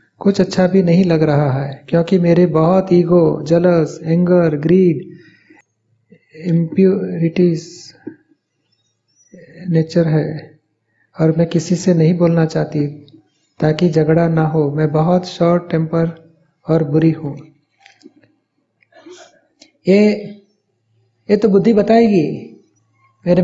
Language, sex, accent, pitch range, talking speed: Hindi, male, native, 160-210 Hz, 105 wpm